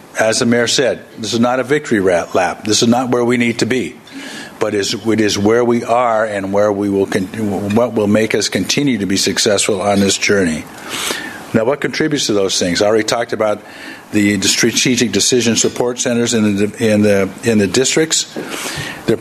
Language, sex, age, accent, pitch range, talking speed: English, male, 50-69, American, 105-120 Hz, 205 wpm